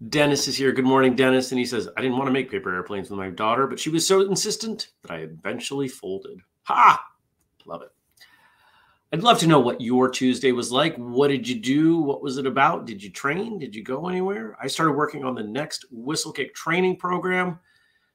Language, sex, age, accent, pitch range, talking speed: English, male, 30-49, American, 120-160 Hz, 210 wpm